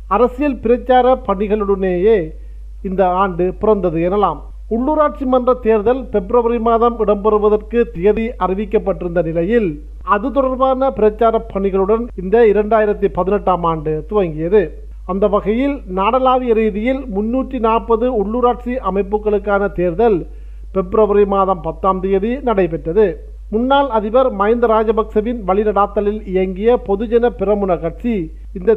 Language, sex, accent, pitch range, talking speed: Tamil, male, native, 190-235 Hz, 100 wpm